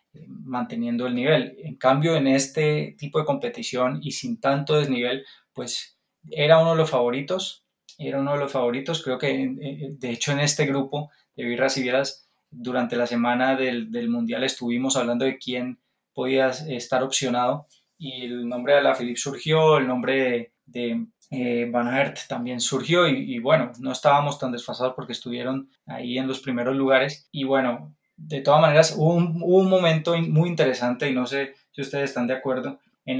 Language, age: Spanish, 20-39